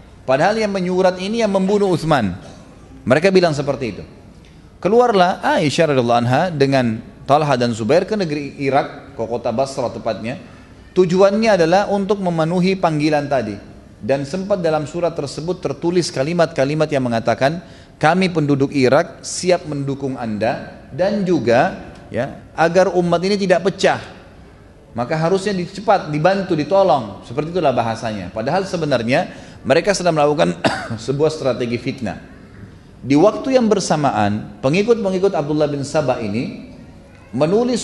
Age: 30-49